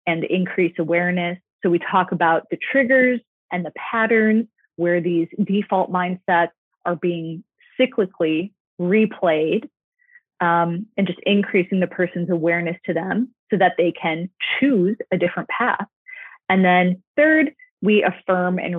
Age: 30-49